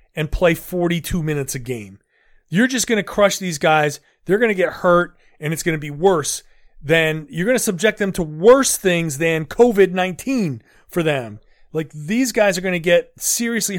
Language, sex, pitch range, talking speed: English, male, 150-210 Hz, 195 wpm